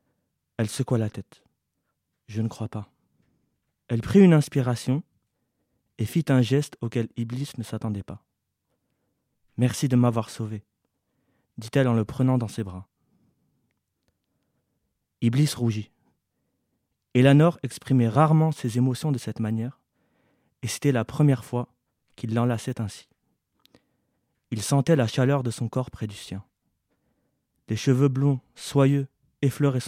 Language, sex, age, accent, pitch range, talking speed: French, male, 30-49, French, 110-140 Hz, 130 wpm